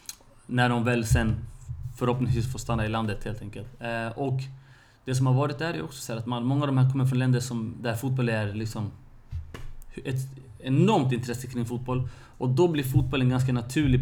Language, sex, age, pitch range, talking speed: Swedish, male, 30-49, 115-130 Hz, 200 wpm